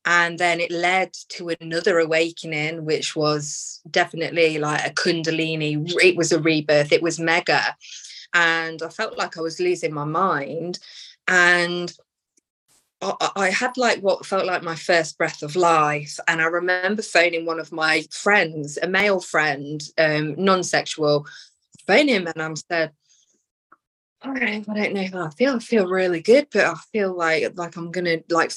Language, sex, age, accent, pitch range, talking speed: English, female, 20-39, British, 165-200 Hz, 165 wpm